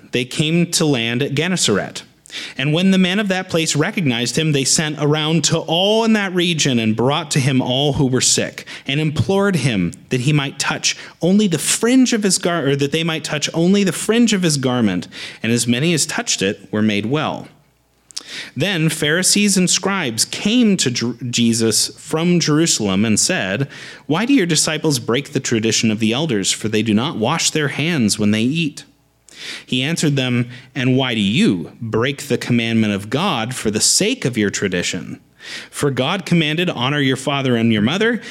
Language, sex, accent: English, male, American